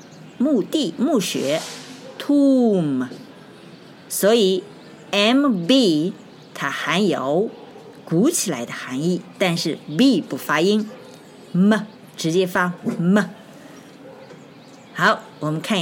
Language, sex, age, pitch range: Chinese, female, 50-69, 160-245 Hz